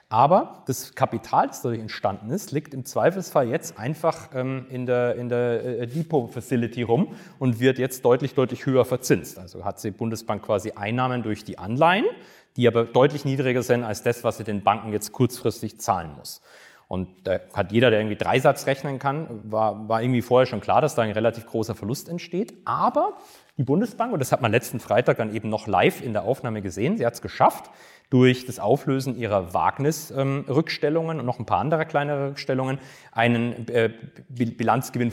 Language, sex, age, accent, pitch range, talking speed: German, male, 30-49, German, 110-145 Hz, 185 wpm